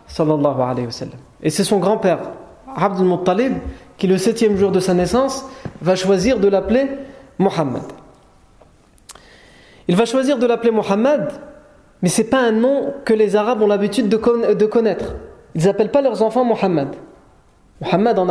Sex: male